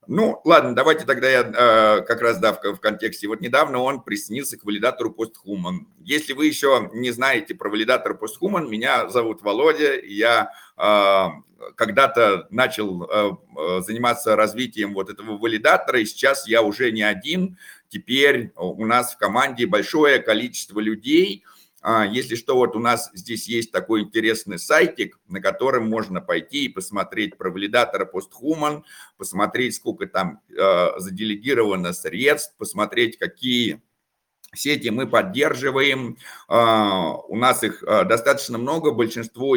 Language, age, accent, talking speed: Russian, 50-69, native, 130 wpm